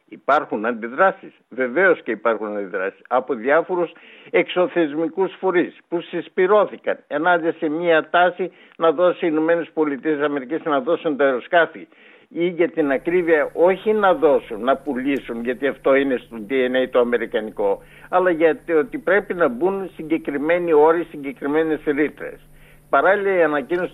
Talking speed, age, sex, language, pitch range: 135 wpm, 60-79, male, Greek, 140-180 Hz